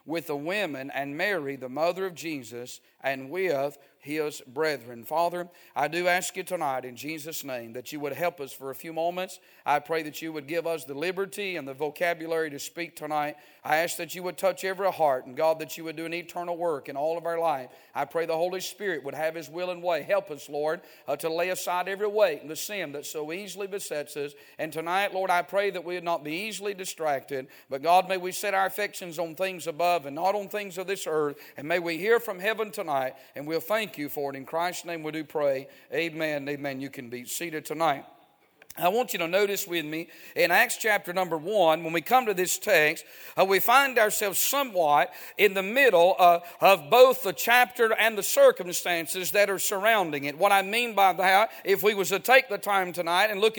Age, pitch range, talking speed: 50-69, 160-205 Hz, 230 wpm